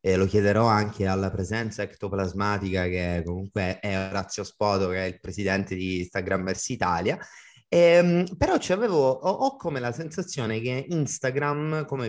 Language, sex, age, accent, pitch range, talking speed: Italian, male, 30-49, native, 105-145 Hz, 150 wpm